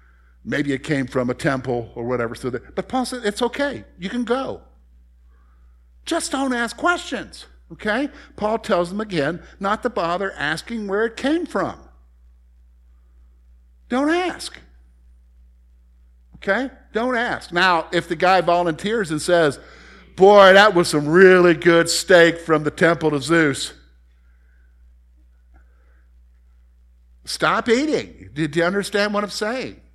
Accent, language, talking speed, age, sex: American, English, 130 wpm, 50-69, male